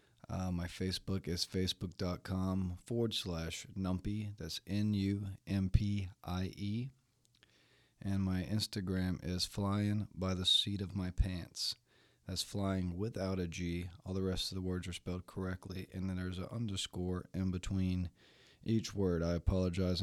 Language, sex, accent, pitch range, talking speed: English, male, American, 90-100 Hz, 140 wpm